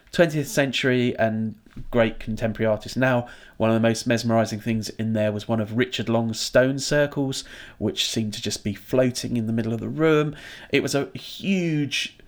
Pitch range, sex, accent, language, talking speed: 110-130 Hz, male, British, English, 185 wpm